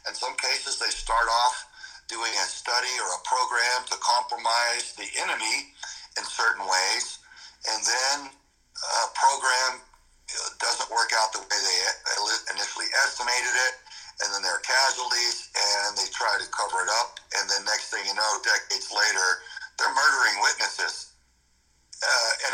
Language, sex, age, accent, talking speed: English, male, 60-79, American, 150 wpm